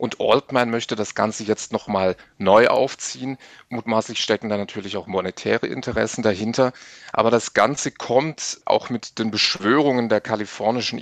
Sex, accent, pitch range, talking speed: male, German, 105-125 Hz, 145 wpm